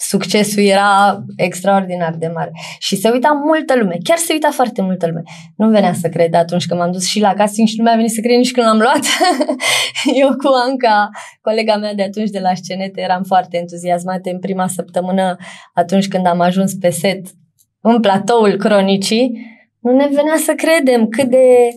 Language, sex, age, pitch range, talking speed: Romanian, female, 20-39, 185-250 Hz, 190 wpm